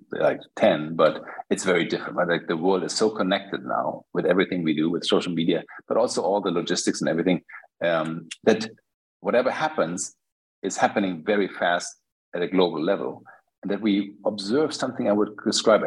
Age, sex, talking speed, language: 50-69, male, 180 wpm, English